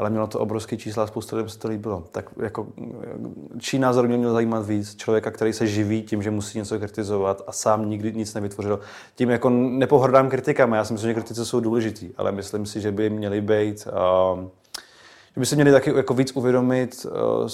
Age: 20-39